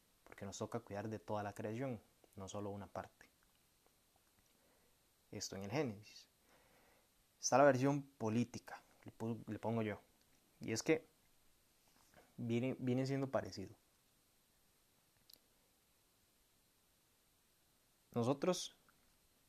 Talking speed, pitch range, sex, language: 95 wpm, 105-130 Hz, male, Spanish